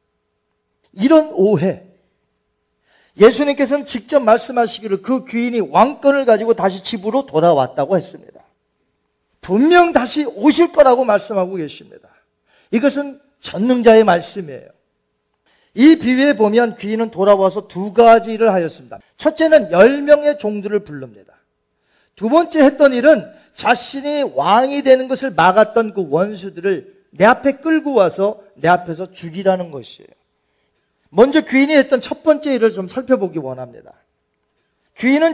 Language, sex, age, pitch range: Korean, male, 40-59, 175-255 Hz